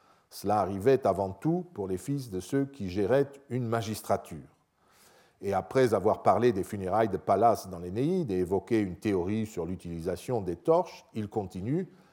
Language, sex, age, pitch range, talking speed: French, male, 50-69, 100-140 Hz, 165 wpm